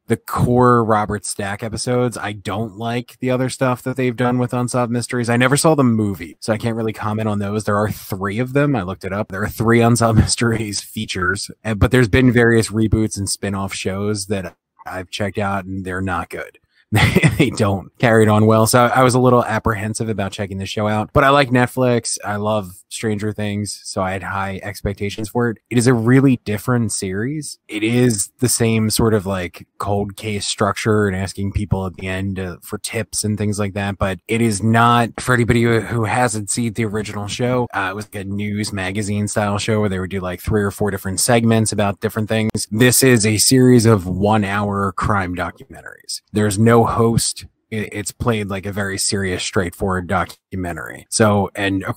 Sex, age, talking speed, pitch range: male, 20-39, 205 wpm, 100-120 Hz